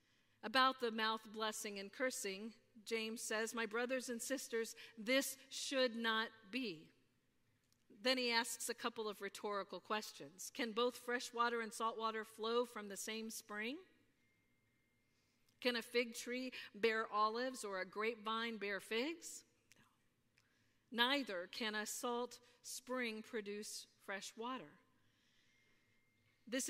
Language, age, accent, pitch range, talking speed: English, 50-69, American, 205-240 Hz, 125 wpm